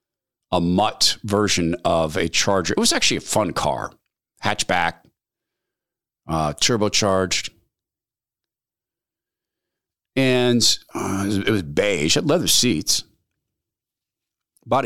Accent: American